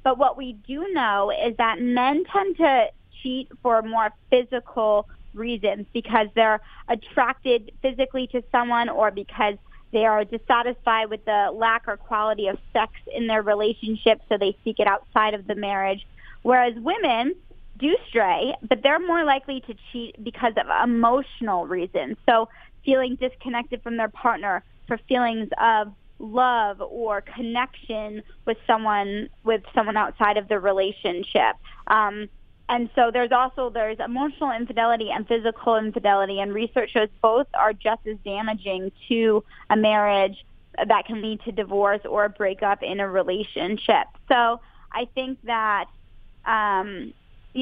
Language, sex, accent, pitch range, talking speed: English, female, American, 210-245 Hz, 145 wpm